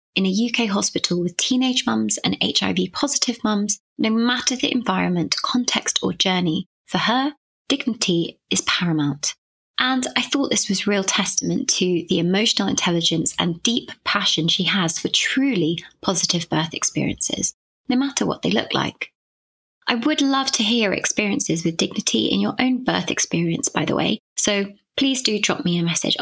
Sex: female